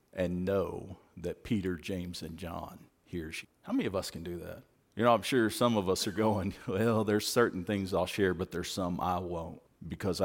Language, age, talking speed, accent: English, 50-69, 215 wpm, American